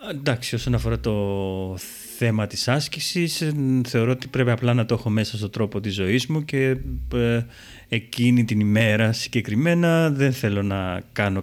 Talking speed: 150 wpm